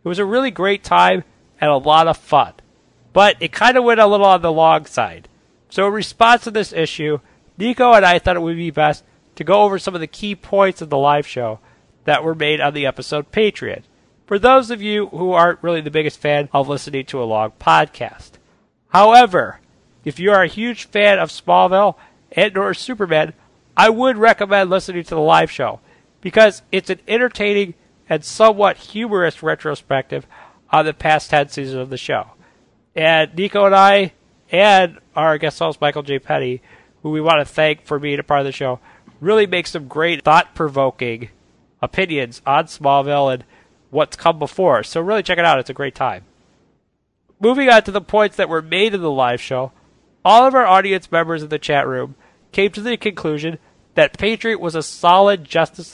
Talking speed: 195 wpm